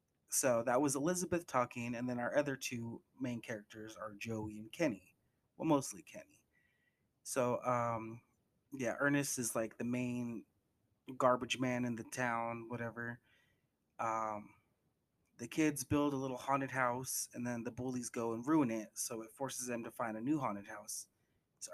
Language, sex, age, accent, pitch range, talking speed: English, male, 30-49, American, 115-135 Hz, 165 wpm